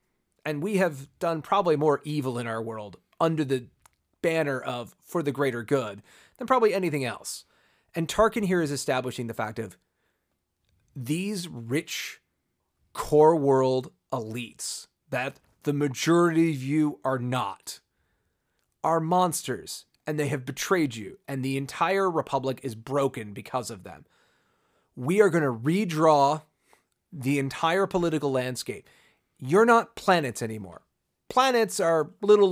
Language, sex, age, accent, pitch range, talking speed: English, male, 30-49, American, 130-175 Hz, 135 wpm